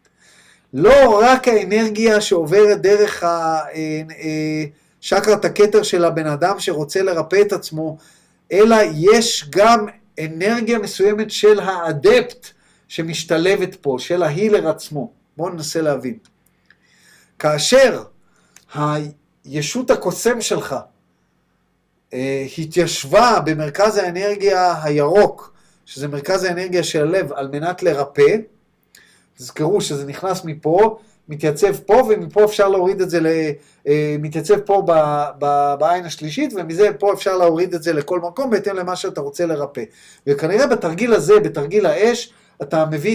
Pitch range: 155-210 Hz